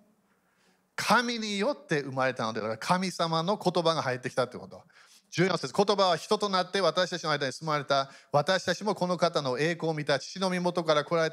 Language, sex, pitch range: Japanese, male, 155-205 Hz